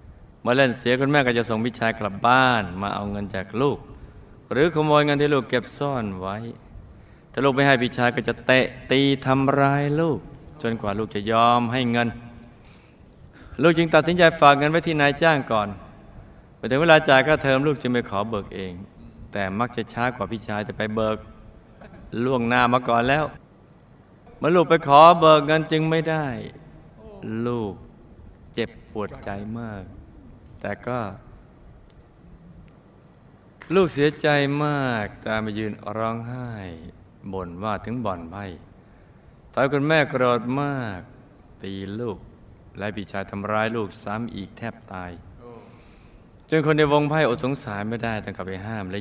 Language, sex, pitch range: Thai, male, 105-135 Hz